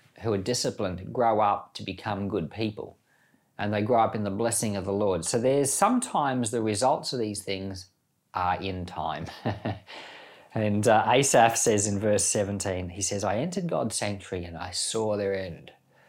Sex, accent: male, Australian